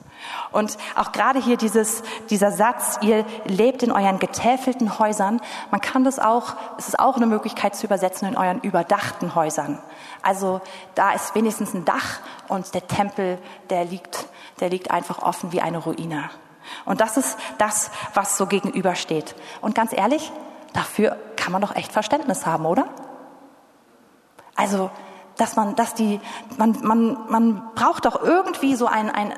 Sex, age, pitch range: female, 30-49, 200-250 Hz